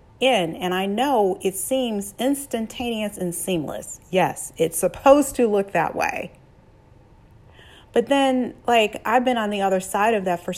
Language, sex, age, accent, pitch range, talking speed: English, female, 40-59, American, 170-225 Hz, 160 wpm